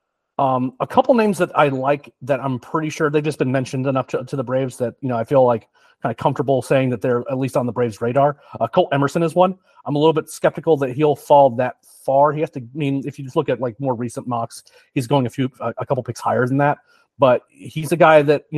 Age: 30-49